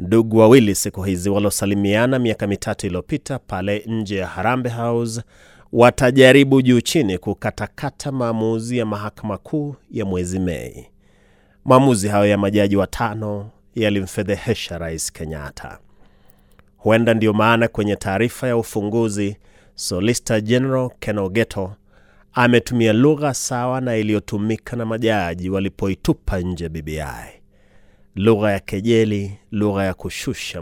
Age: 30-49